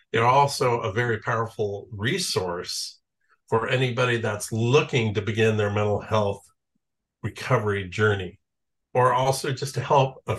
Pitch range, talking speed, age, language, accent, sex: 100-120 Hz, 135 wpm, 50-69, English, American, male